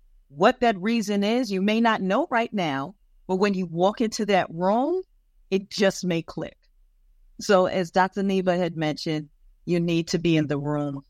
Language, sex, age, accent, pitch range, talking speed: English, female, 40-59, American, 150-190 Hz, 185 wpm